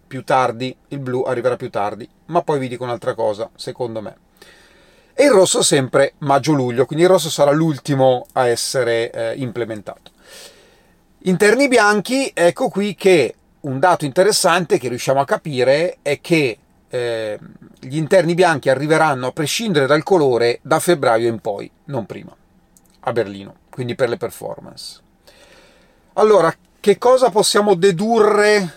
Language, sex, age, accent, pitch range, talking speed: Italian, male, 40-59, native, 135-190 Hz, 145 wpm